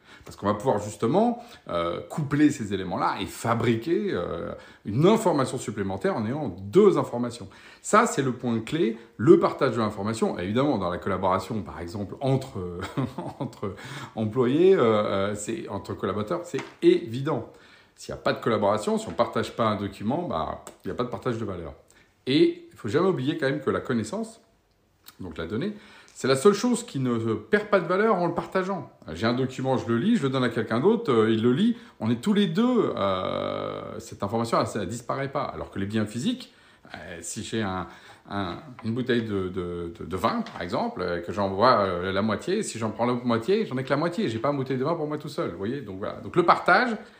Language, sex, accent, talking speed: French, male, French, 220 wpm